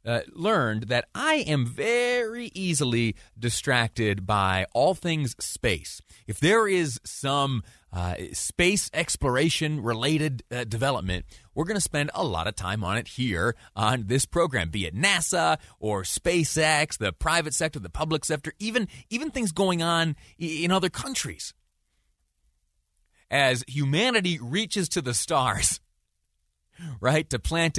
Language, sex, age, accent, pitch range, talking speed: English, male, 30-49, American, 110-170 Hz, 135 wpm